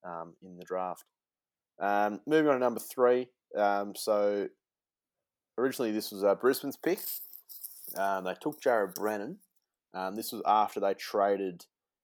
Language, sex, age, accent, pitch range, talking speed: English, male, 20-39, Australian, 95-110 Hz, 145 wpm